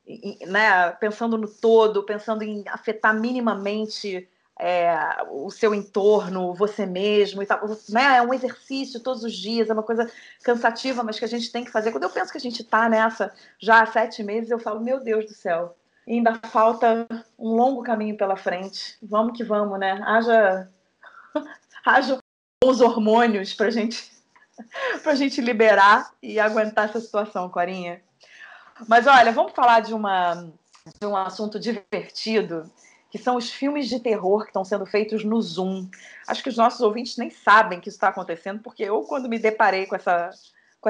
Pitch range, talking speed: 195-235 Hz, 170 wpm